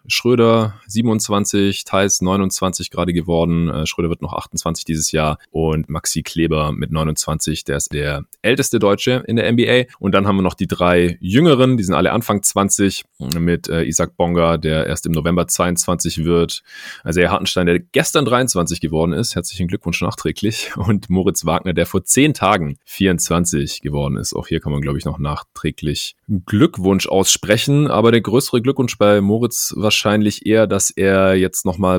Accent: German